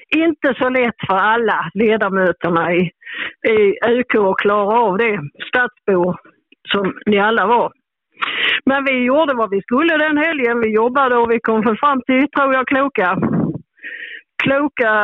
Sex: female